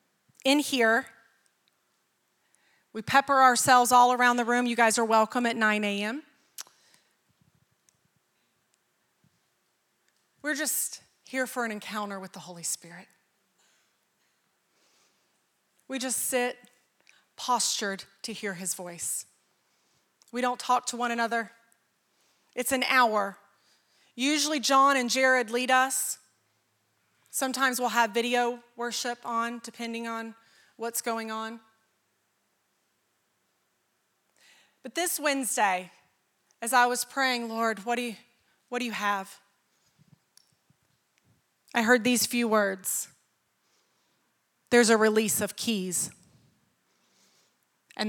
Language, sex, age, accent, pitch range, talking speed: English, female, 30-49, American, 205-245 Hz, 105 wpm